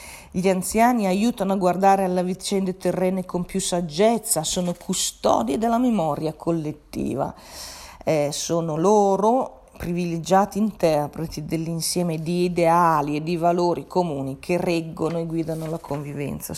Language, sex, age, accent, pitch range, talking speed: Italian, female, 40-59, native, 150-195 Hz, 125 wpm